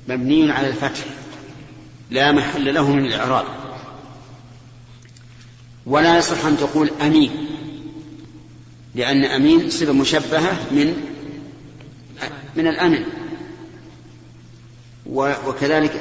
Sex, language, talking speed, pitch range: male, Arabic, 80 wpm, 130-150 Hz